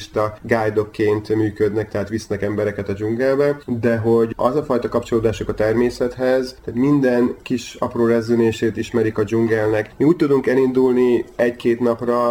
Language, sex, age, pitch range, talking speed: Hungarian, male, 30-49, 110-125 Hz, 140 wpm